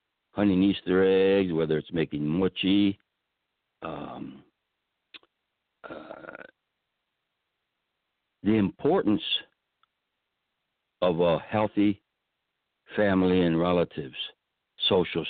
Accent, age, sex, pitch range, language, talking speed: American, 60-79, male, 85-110 Hz, English, 70 wpm